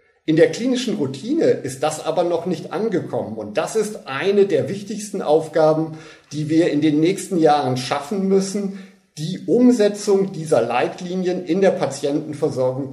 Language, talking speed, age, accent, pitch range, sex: German, 150 wpm, 50-69, German, 145-200 Hz, male